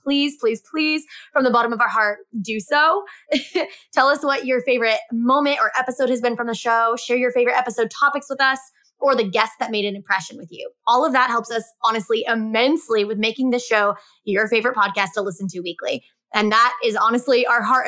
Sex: female